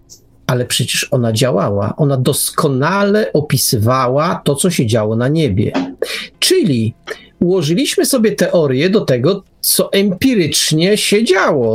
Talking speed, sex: 115 wpm, male